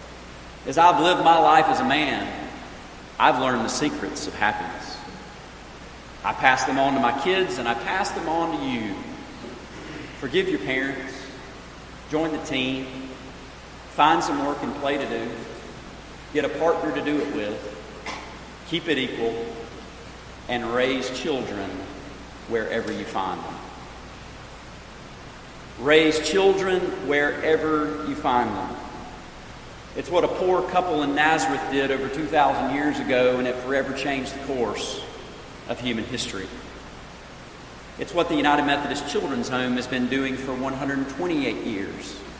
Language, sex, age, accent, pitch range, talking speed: English, male, 40-59, American, 120-155 Hz, 140 wpm